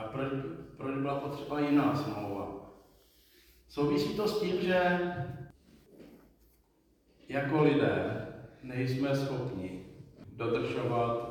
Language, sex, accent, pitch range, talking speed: Czech, male, native, 125-155 Hz, 80 wpm